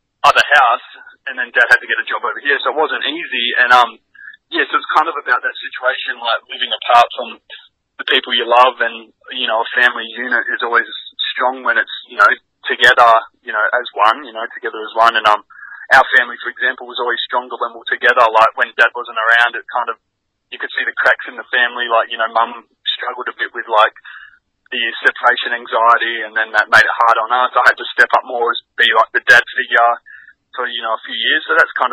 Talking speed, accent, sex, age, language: 240 wpm, Australian, male, 20-39, English